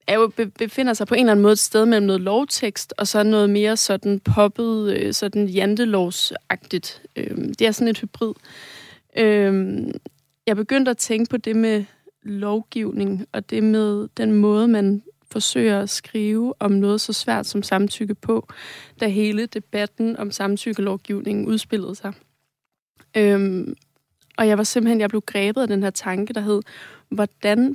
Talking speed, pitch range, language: 155 wpm, 205-230 Hz, Danish